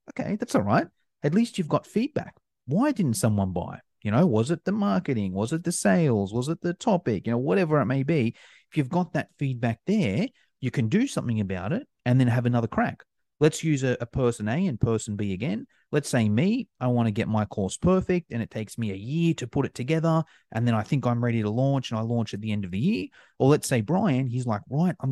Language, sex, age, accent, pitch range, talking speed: English, male, 30-49, Australian, 115-175 Hz, 250 wpm